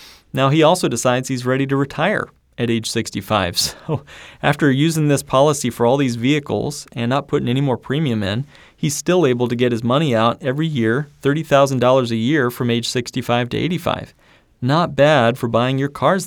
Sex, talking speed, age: male, 190 wpm, 30-49